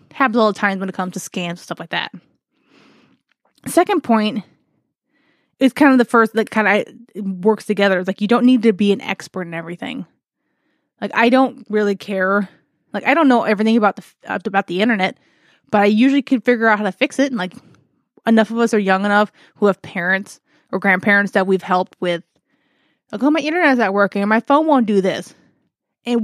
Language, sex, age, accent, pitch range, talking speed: English, female, 20-39, American, 200-245 Hz, 215 wpm